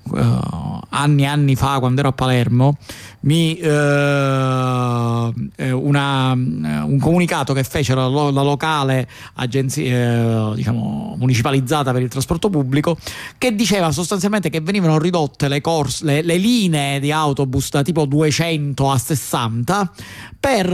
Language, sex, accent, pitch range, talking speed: Italian, male, native, 130-155 Hz, 135 wpm